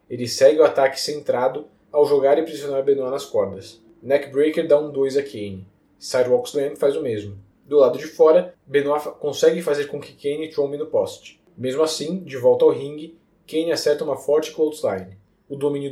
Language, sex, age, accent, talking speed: Portuguese, male, 20-39, Brazilian, 190 wpm